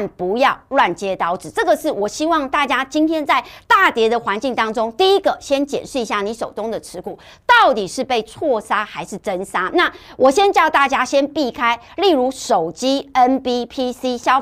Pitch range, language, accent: 220-330 Hz, Chinese, American